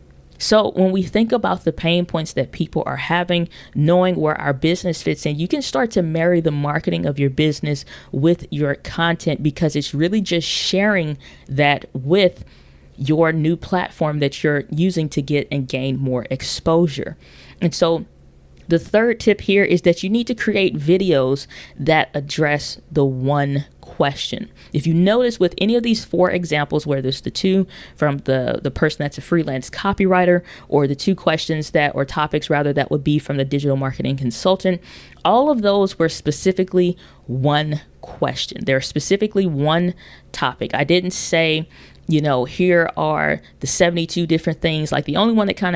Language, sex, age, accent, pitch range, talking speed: English, female, 20-39, American, 145-180 Hz, 175 wpm